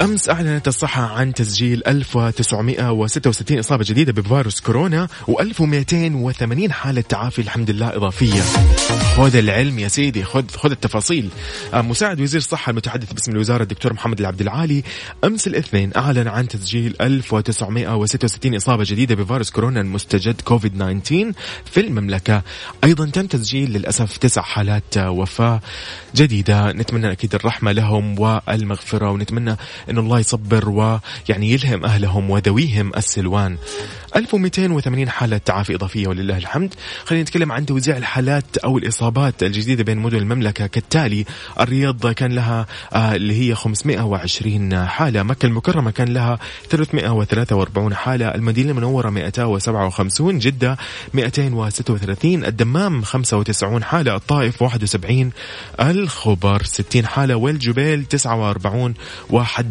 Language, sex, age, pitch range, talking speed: Arabic, male, 20-39, 105-130 Hz, 120 wpm